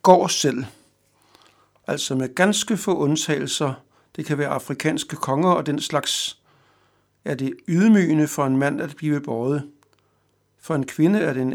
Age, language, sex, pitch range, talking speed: 60-79, Danish, male, 140-165 Hz, 155 wpm